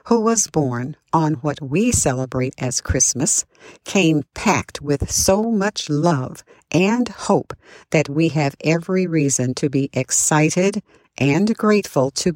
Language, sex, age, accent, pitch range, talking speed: English, female, 50-69, American, 135-175 Hz, 135 wpm